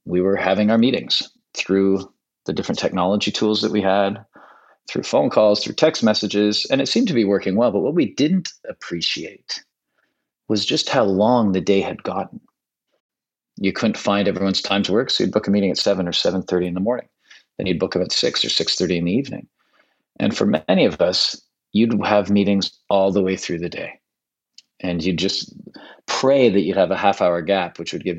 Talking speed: 205 wpm